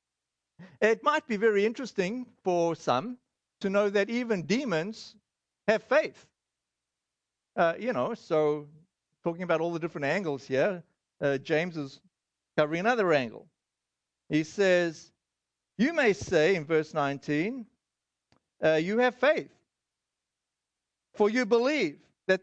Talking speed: 125 wpm